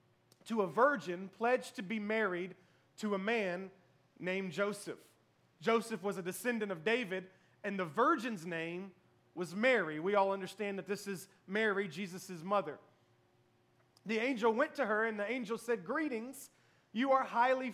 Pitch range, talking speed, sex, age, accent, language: 185-230 Hz, 155 wpm, male, 30-49, American, English